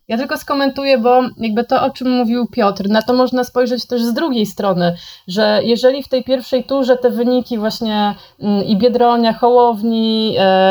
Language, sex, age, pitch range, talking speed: Polish, female, 30-49, 200-245 Hz, 175 wpm